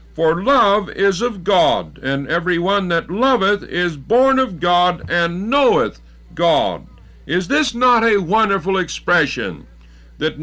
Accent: American